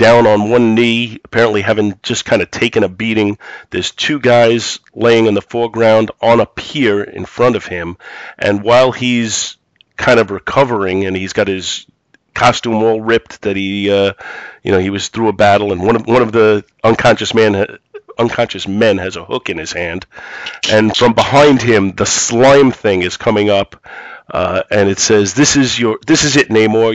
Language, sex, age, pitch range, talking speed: English, male, 40-59, 100-120 Hz, 190 wpm